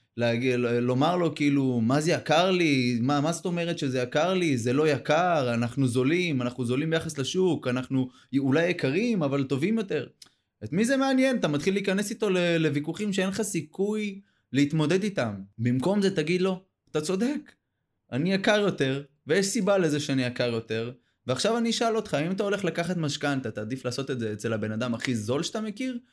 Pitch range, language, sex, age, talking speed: 130-200 Hz, Hebrew, male, 20-39, 185 wpm